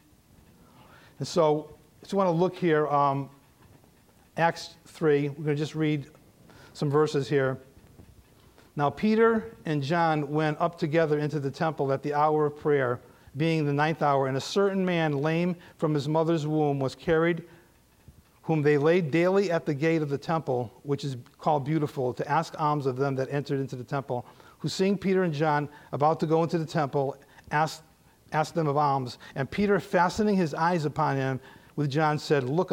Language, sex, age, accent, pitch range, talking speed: English, male, 40-59, American, 140-170 Hz, 185 wpm